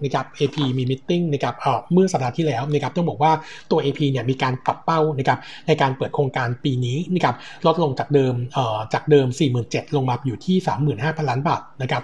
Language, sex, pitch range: Thai, male, 130-155 Hz